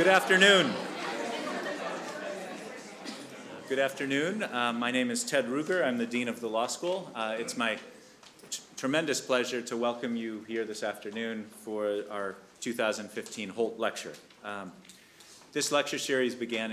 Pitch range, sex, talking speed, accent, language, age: 100-120 Hz, male, 140 wpm, American, English, 30-49